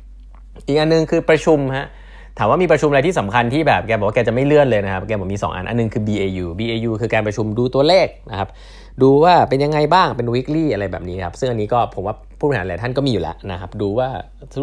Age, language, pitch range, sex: 20-39, Thai, 100-130 Hz, male